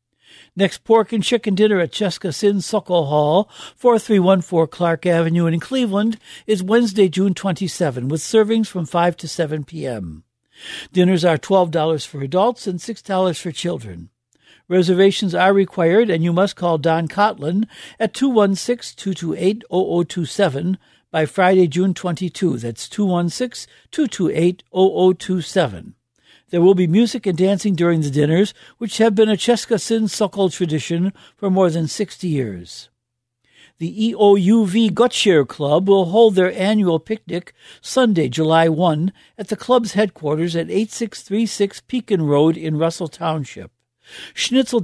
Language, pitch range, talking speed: English, 160-210 Hz, 140 wpm